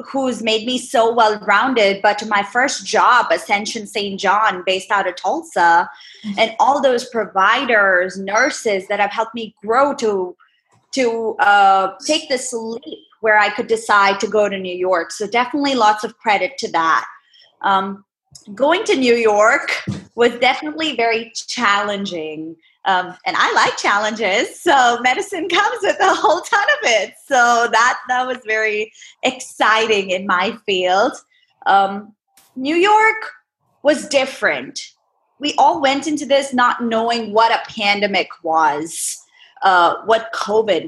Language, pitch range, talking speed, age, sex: English, 200-265 Hz, 145 wpm, 20-39, female